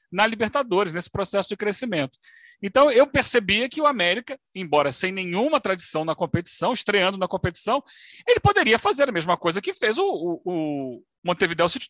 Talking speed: 175 wpm